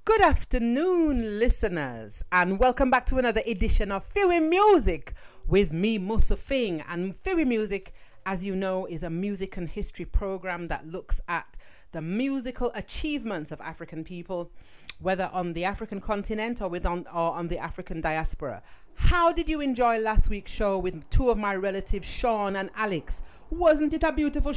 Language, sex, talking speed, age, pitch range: English, female, 170 wpm, 40-59, 170-240 Hz